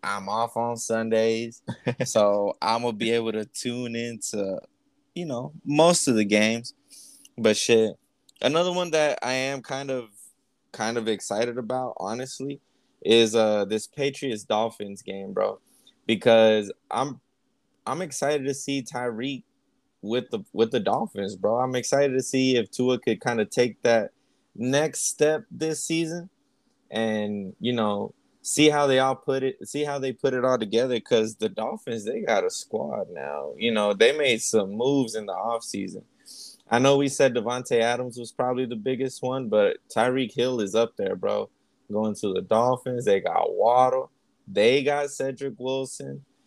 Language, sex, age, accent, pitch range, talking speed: English, male, 20-39, American, 110-140 Hz, 170 wpm